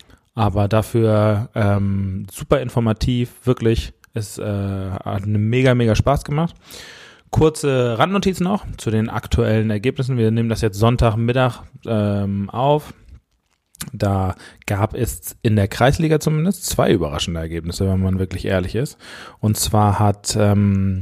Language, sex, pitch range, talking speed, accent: German, male, 100-120 Hz, 130 wpm, German